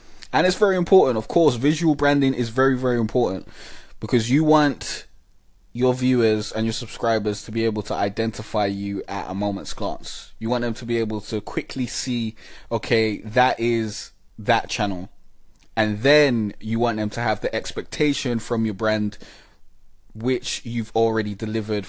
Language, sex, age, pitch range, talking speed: English, male, 20-39, 100-120 Hz, 165 wpm